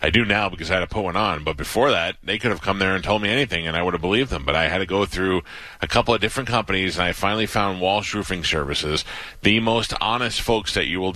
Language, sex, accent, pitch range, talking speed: English, male, American, 90-115 Hz, 285 wpm